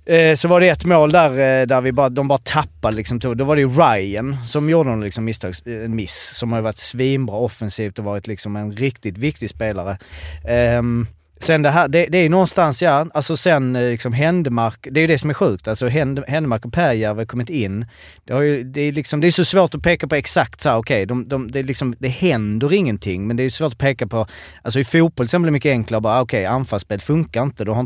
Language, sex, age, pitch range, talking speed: Swedish, male, 30-49, 110-155 Hz, 250 wpm